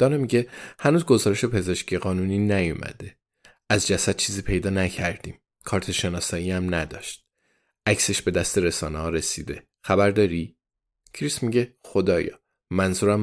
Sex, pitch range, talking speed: male, 90-110 Hz, 125 wpm